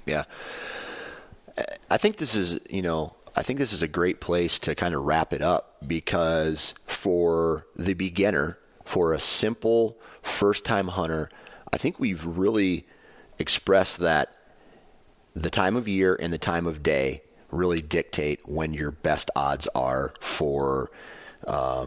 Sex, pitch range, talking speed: male, 75-90 Hz, 150 wpm